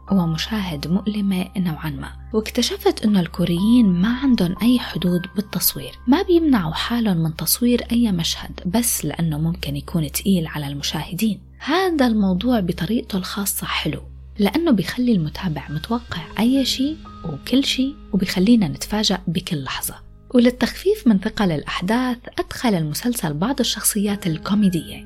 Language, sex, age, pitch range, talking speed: Arabic, female, 20-39, 170-235 Hz, 125 wpm